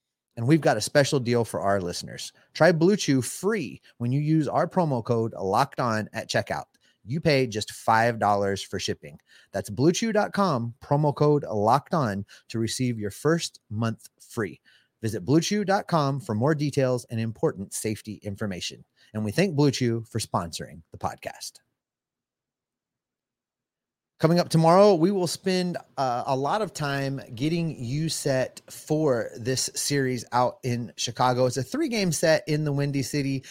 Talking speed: 150 wpm